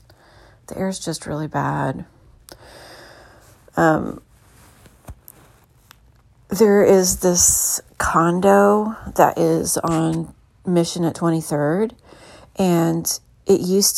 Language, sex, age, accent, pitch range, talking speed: English, female, 40-59, American, 155-195 Hz, 80 wpm